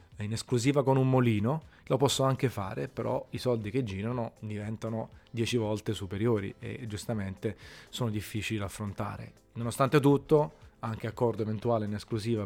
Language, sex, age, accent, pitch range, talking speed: Italian, male, 30-49, native, 105-120 Hz, 150 wpm